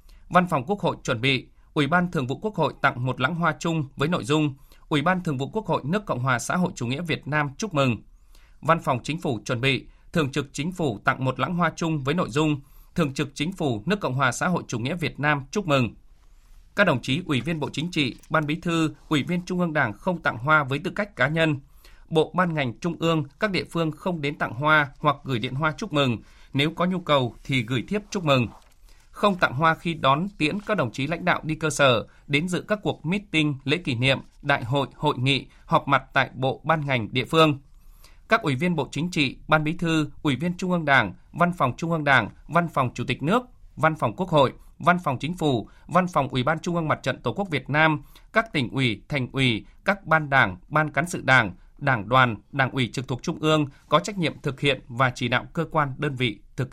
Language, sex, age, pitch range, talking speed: Vietnamese, male, 20-39, 135-165 Hz, 245 wpm